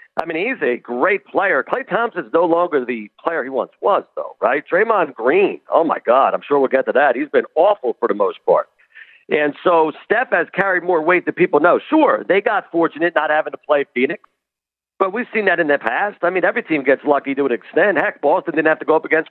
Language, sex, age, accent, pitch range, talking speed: English, male, 50-69, American, 150-205 Hz, 240 wpm